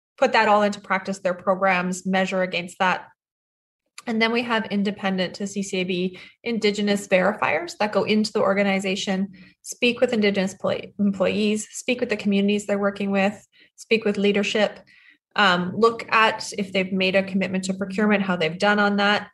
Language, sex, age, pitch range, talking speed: English, female, 20-39, 185-210 Hz, 160 wpm